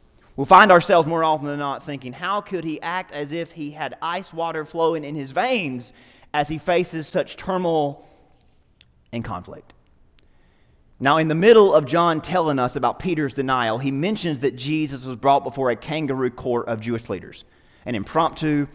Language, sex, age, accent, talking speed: English, male, 30-49, American, 175 wpm